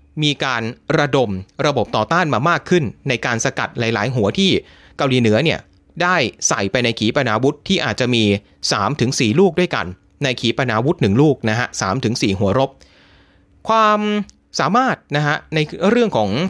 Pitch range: 105-165 Hz